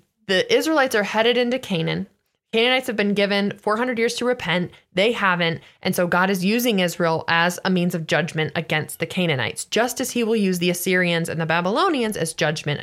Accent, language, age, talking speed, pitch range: American, English, 20-39, 195 wpm, 170-230 Hz